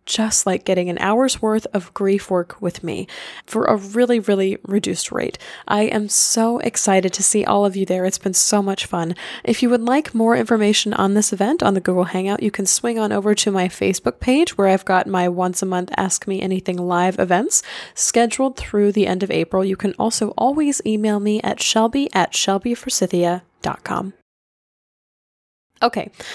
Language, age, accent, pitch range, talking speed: English, 10-29, American, 190-240 Hz, 190 wpm